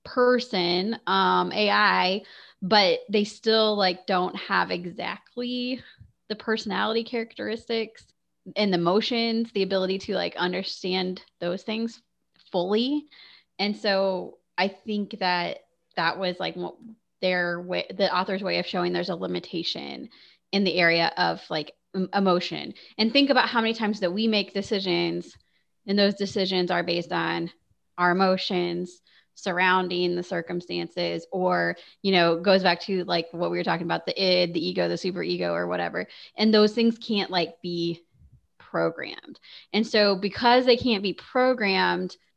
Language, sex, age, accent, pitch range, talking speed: English, female, 20-39, American, 175-215 Hz, 145 wpm